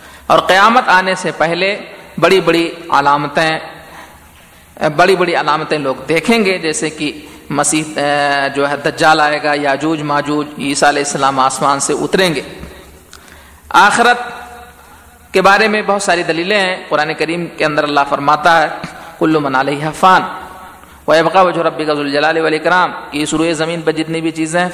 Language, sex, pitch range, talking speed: Urdu, male, 150-185 Hz, 155 wpm